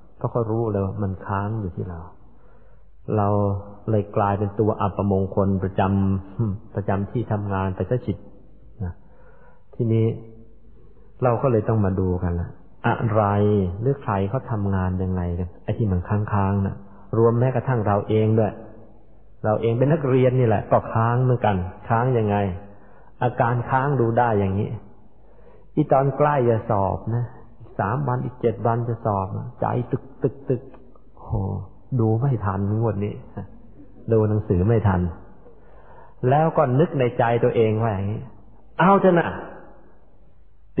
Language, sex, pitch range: Thai, male, 100-125 Hz